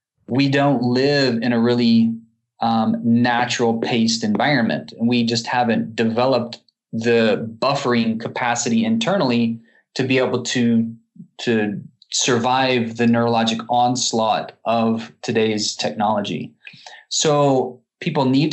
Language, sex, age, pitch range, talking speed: English, male, 20-39, 115-130 Hz, 105 wpm